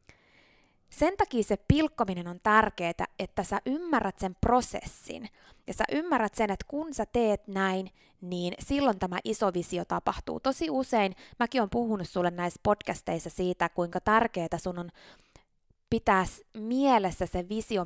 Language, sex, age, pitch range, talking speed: Finnish, female, 20-39, 180-245 Hz, 145 wpm